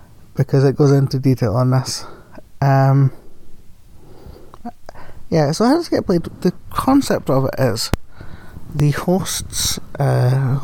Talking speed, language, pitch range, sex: 130 wpm, English, 115-140 Hz, male